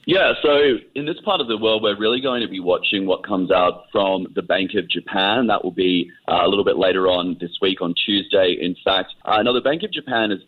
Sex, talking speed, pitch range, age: male, 250 wpm, 90-110 Hz, 30-49